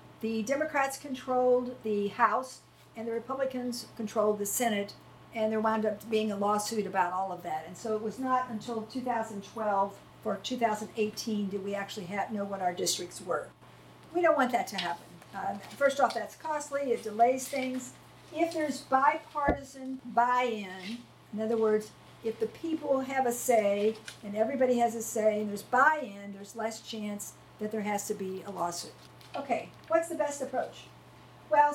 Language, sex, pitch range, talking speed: English, female, 215-265 Hz, 170 wpm